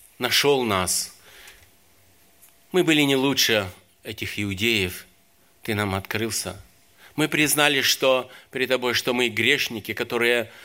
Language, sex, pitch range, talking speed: Russian, male, 90-110 Hz, 115 wpm